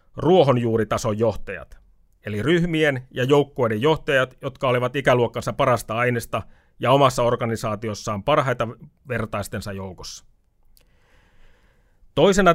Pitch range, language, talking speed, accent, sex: 110-145 Hz, Finnish, 90 wpm, native, male